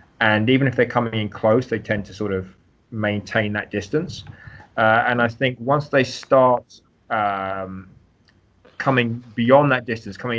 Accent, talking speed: British, 160 wpm